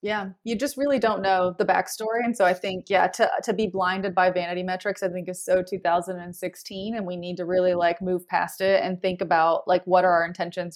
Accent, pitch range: American, 180-215 Hz